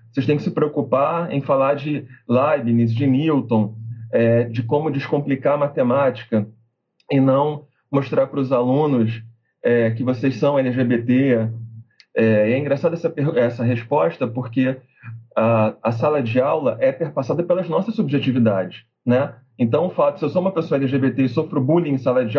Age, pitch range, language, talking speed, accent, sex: 40-59, 120-155 Hz, Portuguese, 165 wpm, Brazilian, male